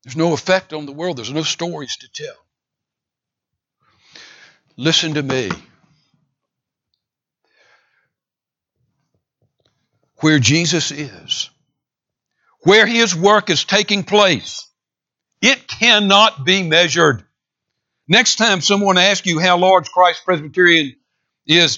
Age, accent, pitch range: 60-79, American, 140-190 Hz